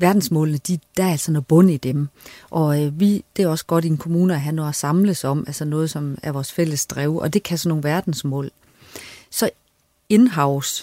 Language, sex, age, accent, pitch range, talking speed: Danish, female, 30-49, native, 150-175 Hz, 220 wpm